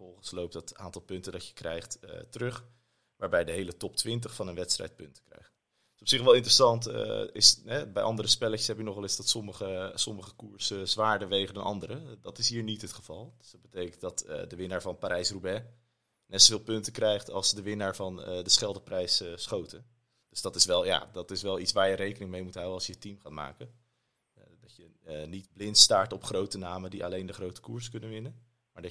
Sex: male